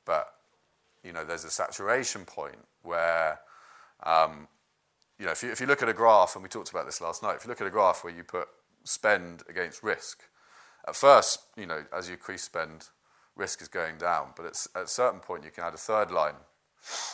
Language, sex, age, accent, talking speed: English, male, 30-49, British, 215 wpm